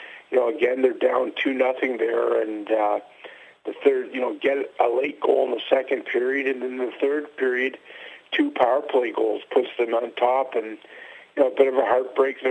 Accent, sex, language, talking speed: American, male, English, 205 wpm